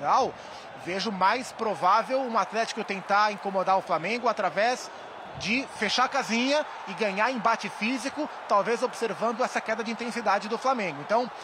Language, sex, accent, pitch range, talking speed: Portuguese, male, Brazilian, 200-245 Hz, 140 wpm